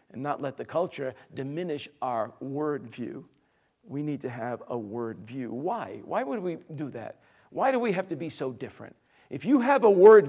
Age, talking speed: 50-69, 205 wpm